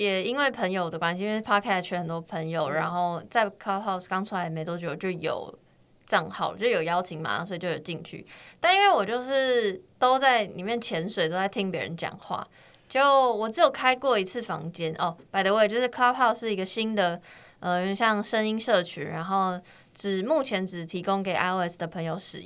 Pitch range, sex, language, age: 170-215 Hz, female, Chinese, 20-39